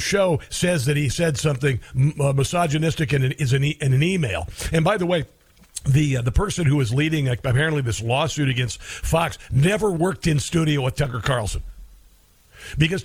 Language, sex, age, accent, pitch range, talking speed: English, male, 50-69, American, 140-185 Hz, 180 wpm